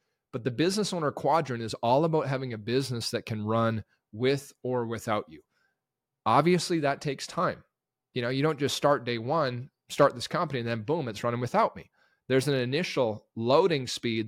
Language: English